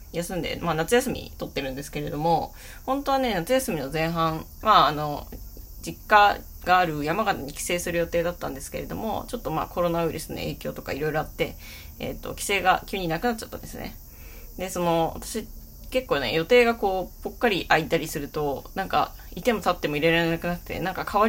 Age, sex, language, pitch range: 20-39, female, Japanese, 155-220 Hz